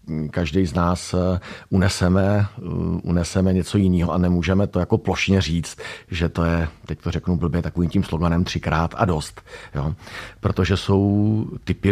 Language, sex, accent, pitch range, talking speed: Czech, male, native, 85-100 Hz, 145 wpm